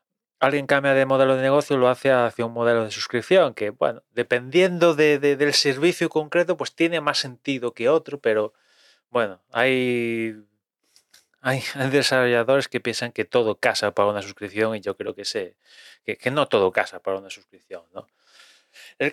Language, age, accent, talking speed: Spanish, 20-39, Spanish, 175 wpm